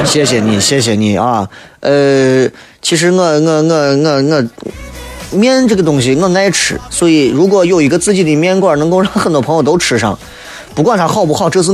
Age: 30-49